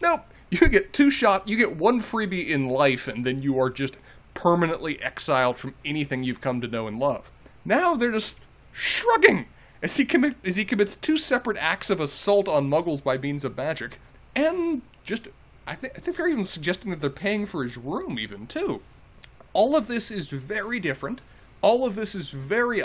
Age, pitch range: 30-49, 130-210 Hz